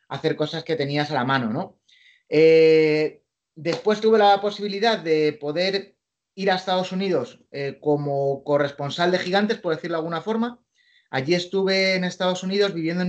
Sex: male